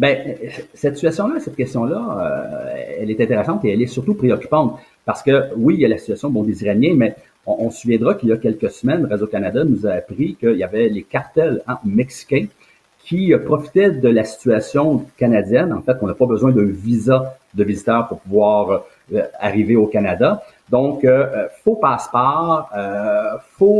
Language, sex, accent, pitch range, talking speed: French, male, Canadian, 115-145 Hz, 190 wpm